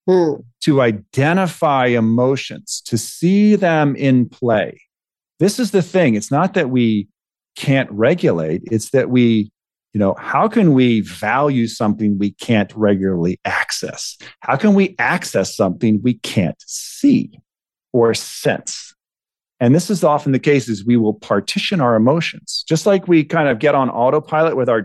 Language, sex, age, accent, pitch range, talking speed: English, male, 40-59, American, 110-170 Hz, 155 wpm